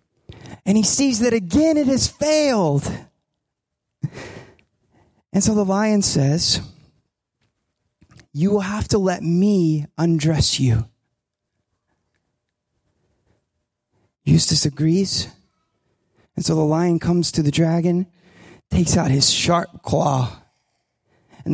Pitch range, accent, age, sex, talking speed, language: 145-180 Hz, American, 20-39, male, 105 wpm, English